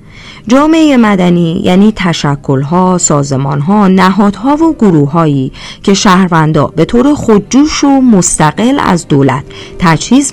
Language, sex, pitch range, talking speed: Persian, female, 145-215 Hz, 105 wpm